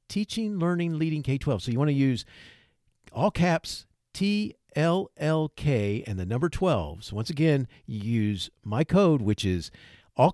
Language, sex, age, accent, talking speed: English, male, 50-69, American, 150 wpm